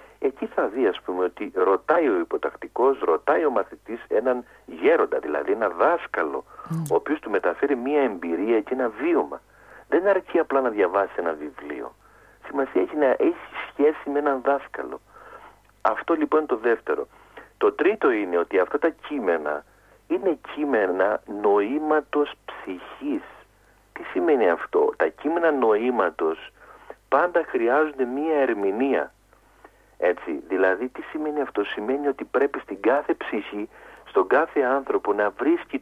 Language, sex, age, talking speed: Greek, male, 50-69, 140 wpm